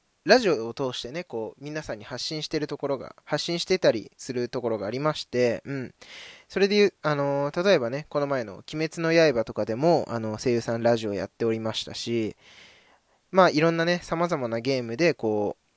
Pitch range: 120-175 Hz